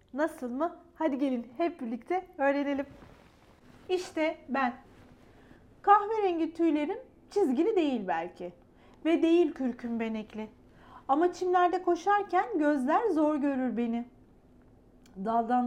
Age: 40-59